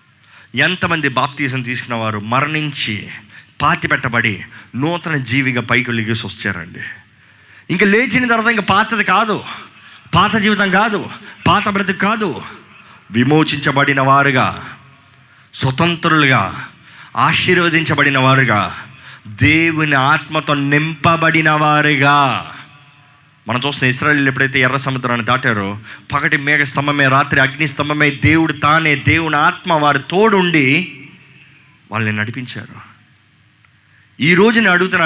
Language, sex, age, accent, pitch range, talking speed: Telugu, male, 20-39, native, 125-155 Hz, 90 wpm